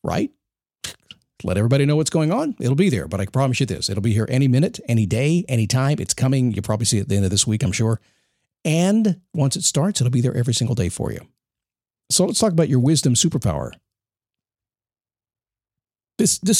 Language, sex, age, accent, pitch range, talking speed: English, male, 50-69, American, 110-150 Hz, 215 wpm